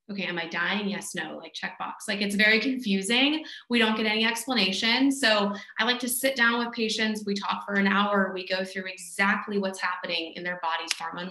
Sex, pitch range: female, 180-215 Hz